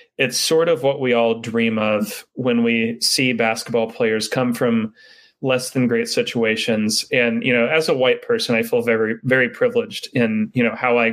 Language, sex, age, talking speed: English, male, 30-49, 195 wpm